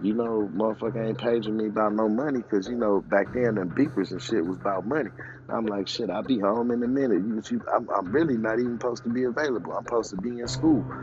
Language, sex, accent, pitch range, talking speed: English, male, American, 95-115 Hz, 255 wpm